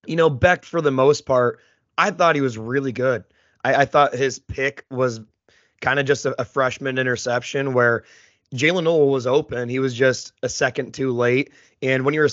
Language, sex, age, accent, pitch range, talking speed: English, male, 30-49, American, 120-140 Hz, 205 wpm